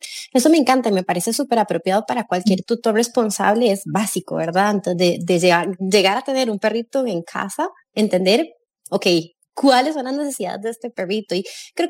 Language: English